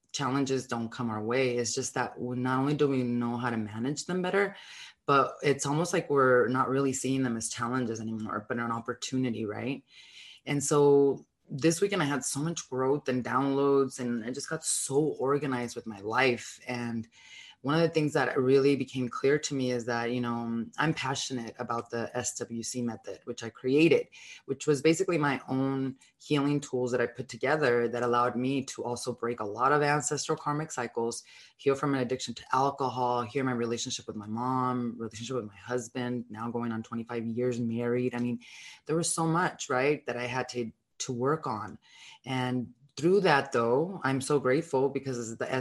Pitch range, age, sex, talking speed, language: 120-140 Hz, 20-39, female, 190 wpm, English